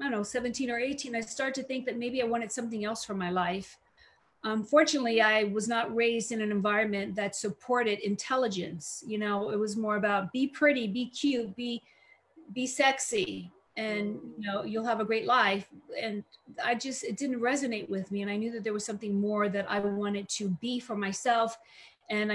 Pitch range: 200-230 Hz